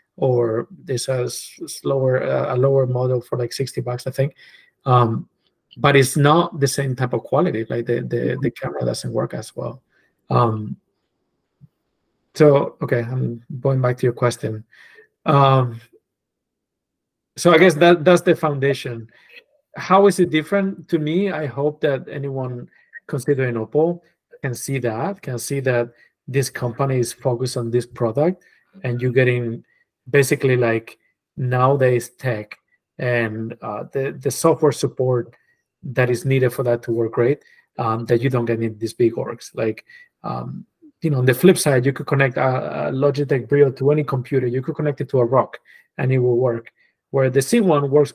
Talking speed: 170 wpm